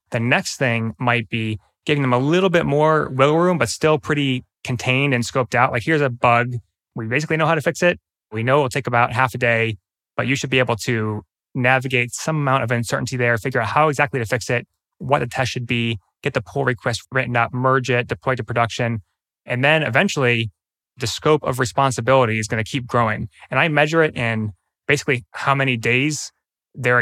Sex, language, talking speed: male, English, 215 wpm